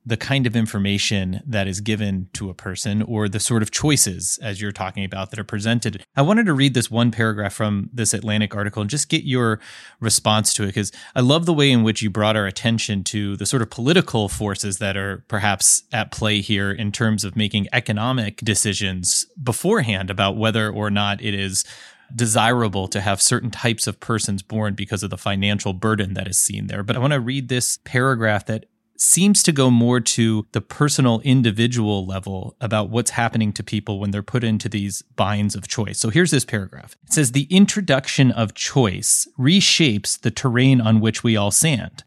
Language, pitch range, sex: English, 105-130 Hz, male